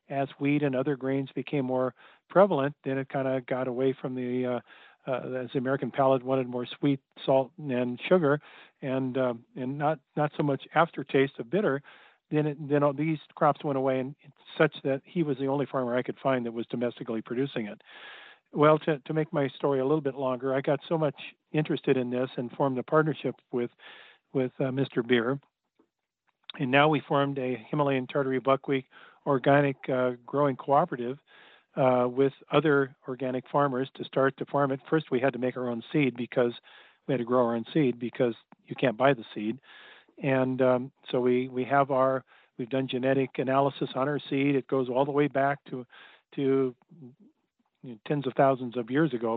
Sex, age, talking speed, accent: male, 50-69, 195 wpm, American